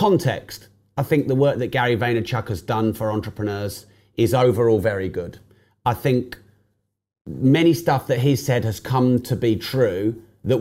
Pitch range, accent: 105-140 Hz, British